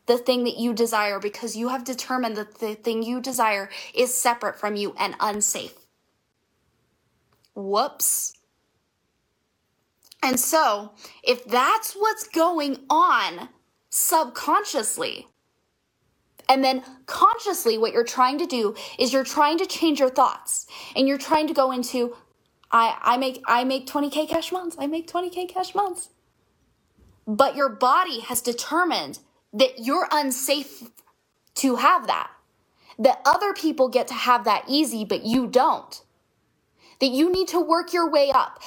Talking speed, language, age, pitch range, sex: 145 wpm, English, 10-29, 245-325 Hz, female